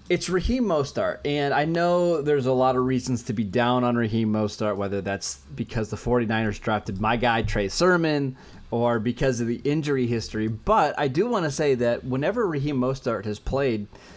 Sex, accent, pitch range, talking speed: male, American, 115-145 Hz, 190 wpm